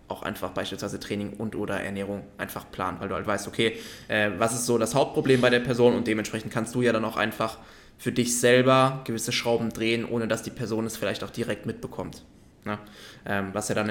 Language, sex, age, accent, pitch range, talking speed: German, male, 20-39, German, 105-120 Hz, 215 wpm